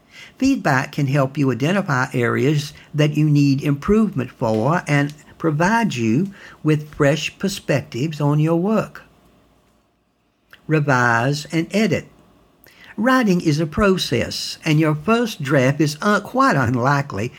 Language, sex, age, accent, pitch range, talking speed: English, male, 60-79, American, 135-185 Hz, 115 wpm